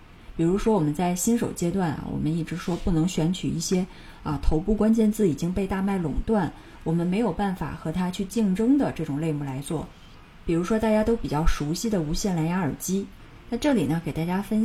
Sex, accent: female, native